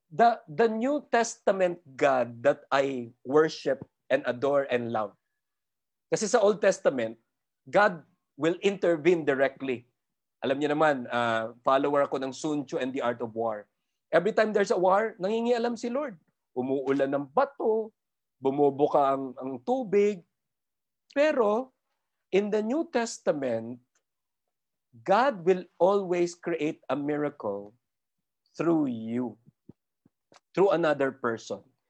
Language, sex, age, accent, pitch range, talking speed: Filipino, male, 50-69, native, 125-180 Hz, 125 wpm